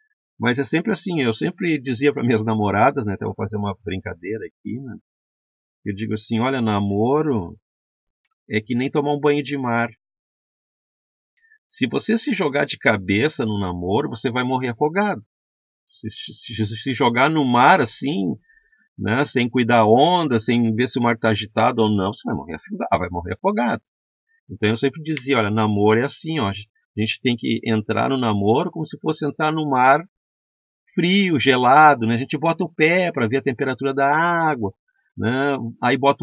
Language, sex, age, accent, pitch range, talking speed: Portuguese, male, 50-69, Brazilian, 110-155 Hz, 175 wpm